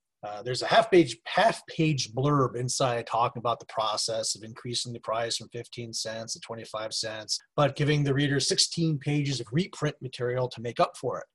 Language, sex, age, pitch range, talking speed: English, male, 30-49, 120-155 Hz, 185 wpm